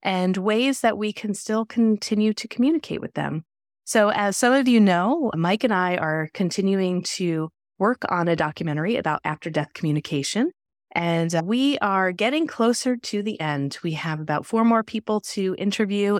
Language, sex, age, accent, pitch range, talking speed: English, female, 30-49, American, 165-220 Hz, 170 wpm